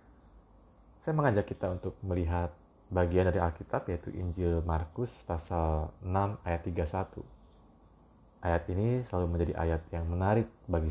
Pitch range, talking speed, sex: 80-105 Hz, 125 wpm, male